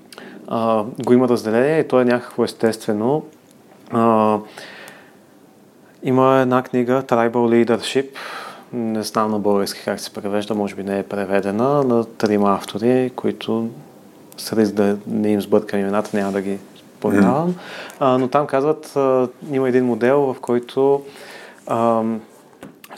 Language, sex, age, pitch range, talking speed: Bulgarian, male, 30-49, 110-130 Hz, 135 wpm